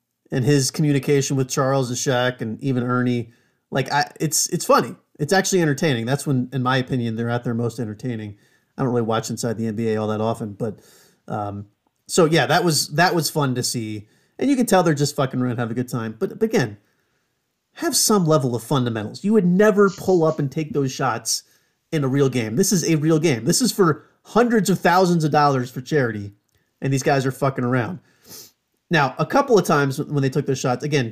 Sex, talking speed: male, 220 wpm